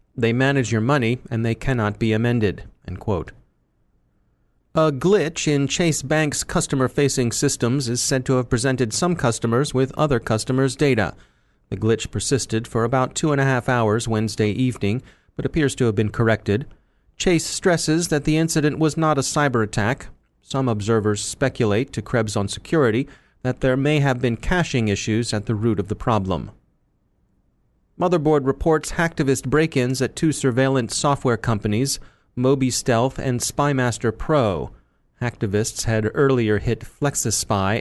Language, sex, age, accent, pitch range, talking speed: English, male, 30-49, American, 110-140 Hz, 150 wpm